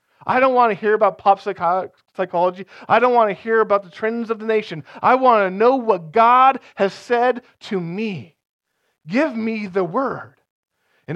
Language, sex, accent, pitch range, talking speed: English, male, American, 145-200 Hz, 185 wpm